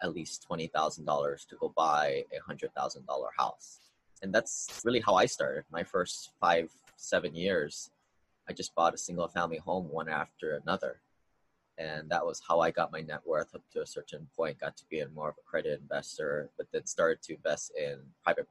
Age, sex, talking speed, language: 20-39, male, 205 wpm, English